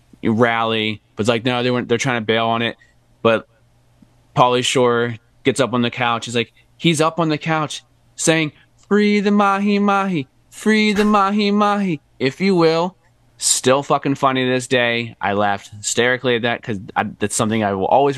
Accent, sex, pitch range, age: American, male, 115-130 Hz, 20-39